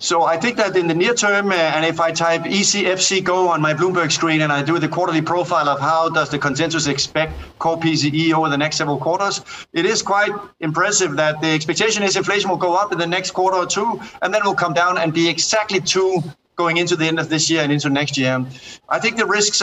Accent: Danish